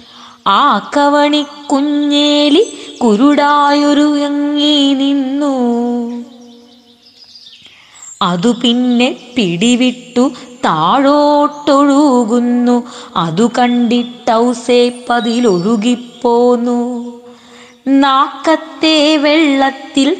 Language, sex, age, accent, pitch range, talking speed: Malayalam, female, 20-39, native, 235-290 Hz, 35 wpm